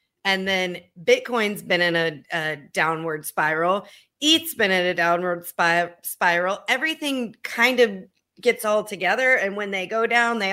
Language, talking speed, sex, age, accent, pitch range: English, 160 wpm, female, 30-49, American, 180-225 Hz